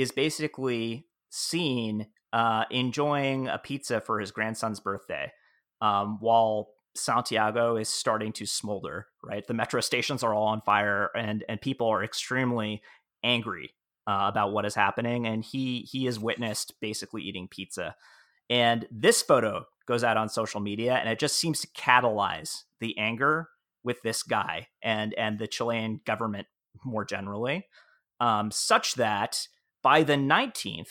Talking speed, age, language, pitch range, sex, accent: 150 wpm, 30-49, English, 110-140 Hz, male, American